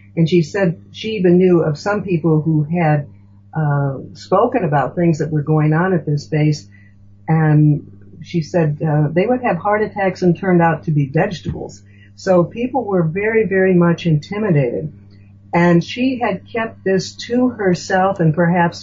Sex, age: female, 60-79